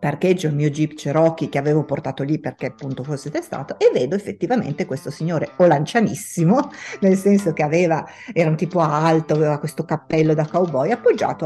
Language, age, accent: Italian, 50-69, native